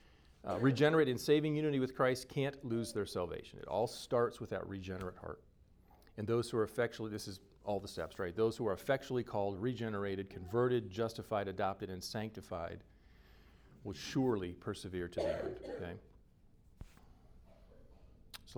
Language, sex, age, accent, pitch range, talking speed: English, male, 40-59, American, 95-115 Hz, 155 wpm